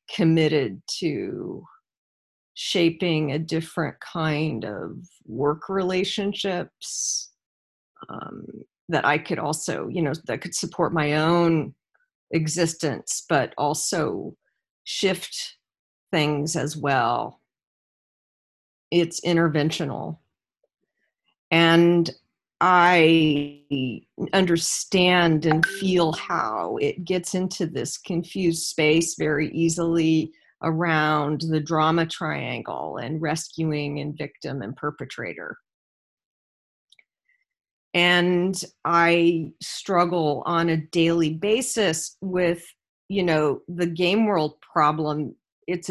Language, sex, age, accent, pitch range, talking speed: English, female, 40-59, American, 155-180 Hz, 90 wpm